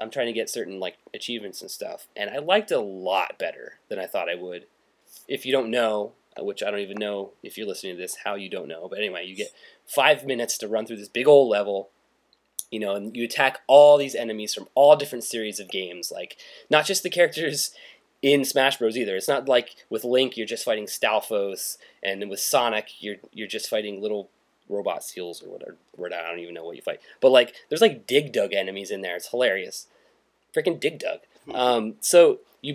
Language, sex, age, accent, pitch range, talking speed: English, male, 20-39, American, 105-150 Hz, 220 wpm